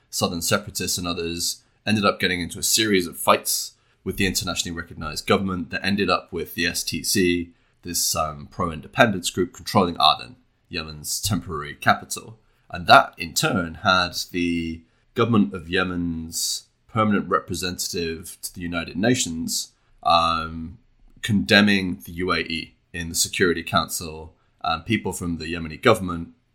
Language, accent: English, British